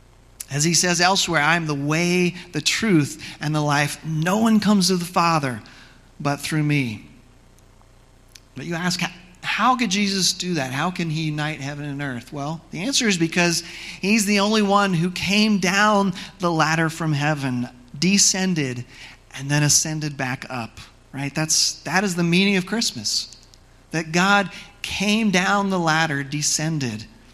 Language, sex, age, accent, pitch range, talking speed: English, male, 40-59, American, 130-175 Hz, 160 wpm